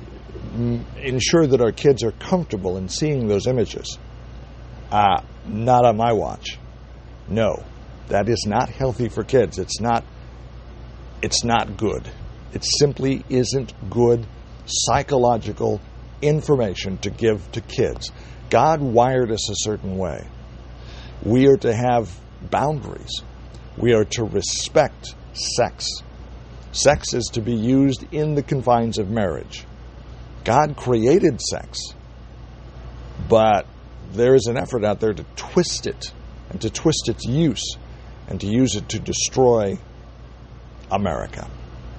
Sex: male